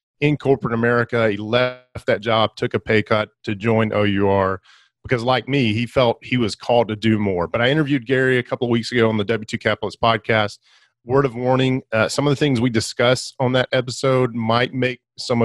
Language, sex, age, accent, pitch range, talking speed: English, male, 40-59, American, 110-130 Hz, 215 wpm